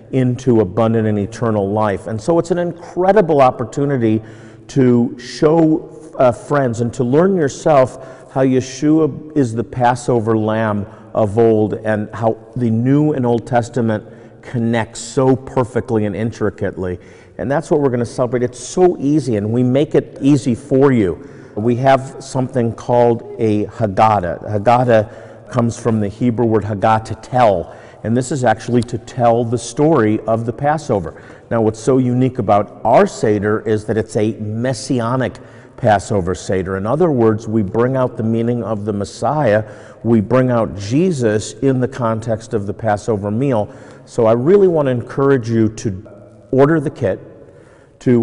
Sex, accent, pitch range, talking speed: male, American, 110-130 Hz, 160 wpm